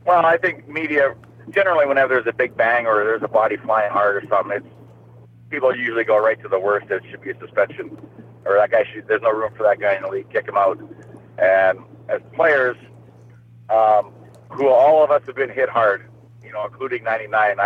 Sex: male